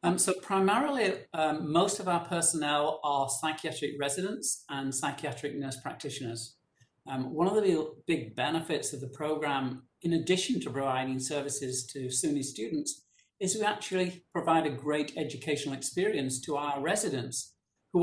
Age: 50-69